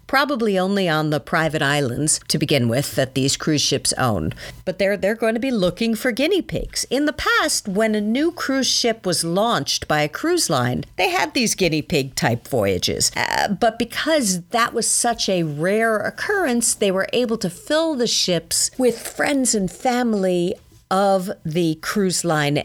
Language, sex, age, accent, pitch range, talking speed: English, female, 50-69, American, 145-230 Hz, 185 wpm